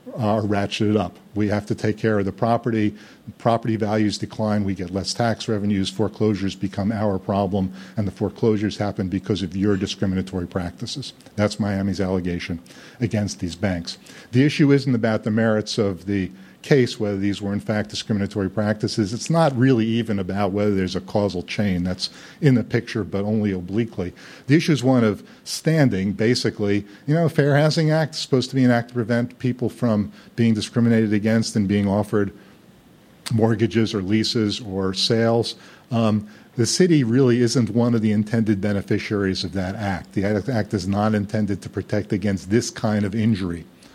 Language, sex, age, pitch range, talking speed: English, male, 50-69, 95-115 Hz, 175 wpm